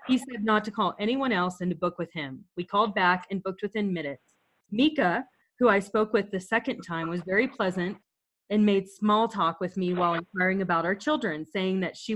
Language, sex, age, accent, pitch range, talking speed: English, female, 30-49, American, 180-230 Hz, 215 wpm